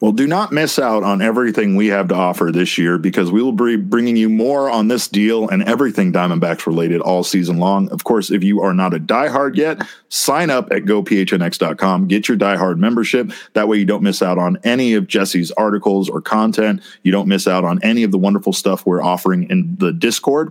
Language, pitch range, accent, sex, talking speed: English, 95-120 Hz, American, male, 220 wpm